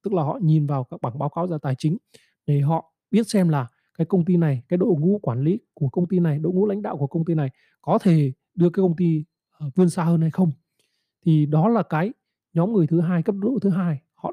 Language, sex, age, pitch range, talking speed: Vietnamese, male, 20-39, 155-195 Hz, 260 wpm